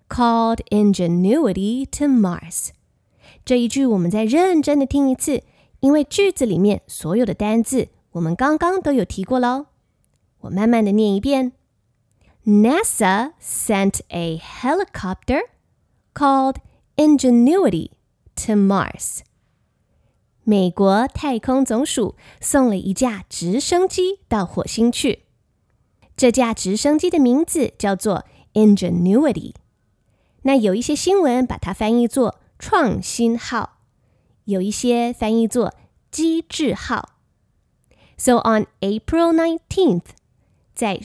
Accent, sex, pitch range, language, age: American, female, 205-285 Hz, Chinese, 20-39